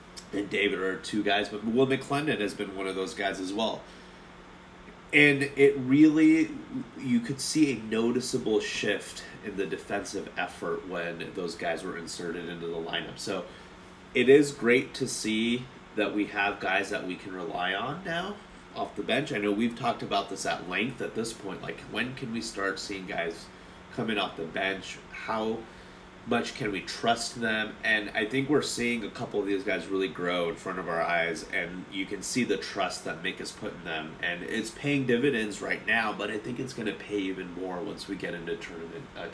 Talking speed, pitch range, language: 205 wpm, 95-125 Hz, English